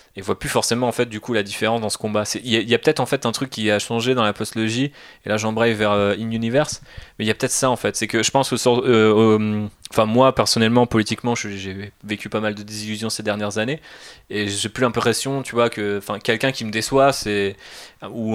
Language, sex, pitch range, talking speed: French, male, 105-125 Hz, 260 wpm